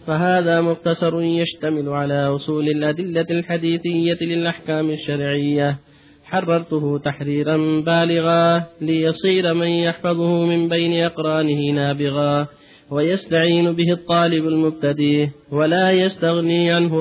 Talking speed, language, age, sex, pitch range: 90 wpm, Arabic, 30-49, male, 145-170 Hz